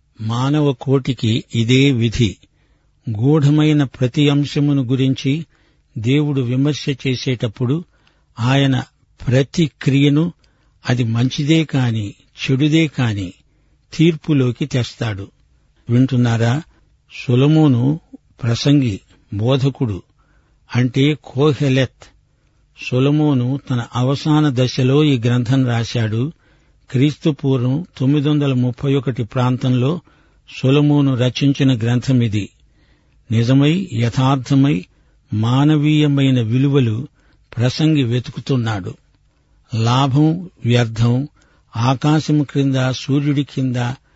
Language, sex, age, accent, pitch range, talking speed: Telugu, male, 60-79, native, 120-145 Hz, 75 wpm